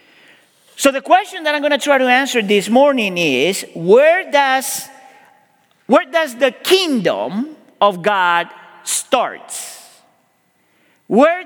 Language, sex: English, male